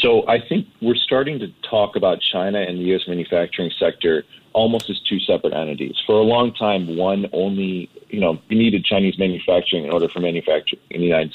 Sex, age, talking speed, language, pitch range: male, 40-59, 195 wpm, English, 85-105 Hz